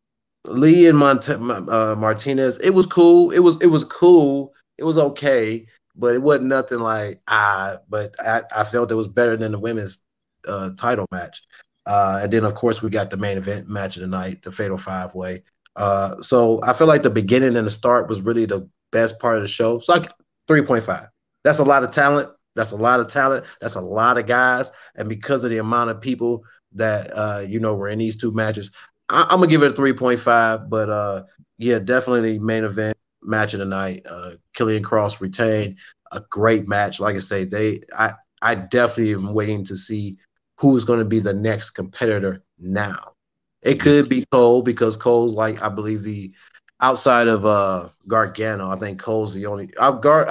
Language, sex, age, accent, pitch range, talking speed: English, male, 30-49, American, 105-125 Hz, 200 wpm